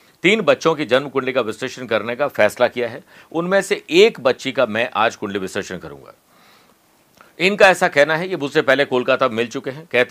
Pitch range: 130-160 Hz